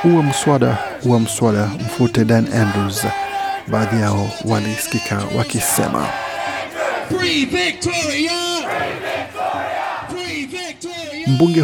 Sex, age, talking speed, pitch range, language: male, 50-69, 65 wpm, 115-165 Hz, Swahili